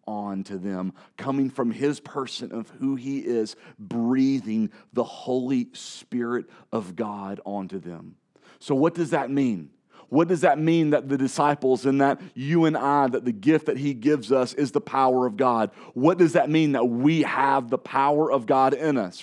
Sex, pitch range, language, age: male, 135-165 Hz, English, 40-59